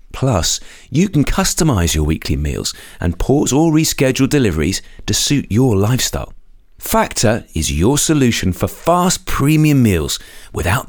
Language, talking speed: English, 140 wpm